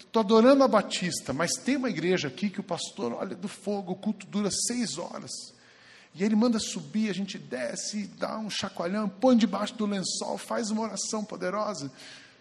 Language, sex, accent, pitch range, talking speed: Portuguese, male, Brazilian, 140-205 Hz, 180 wpm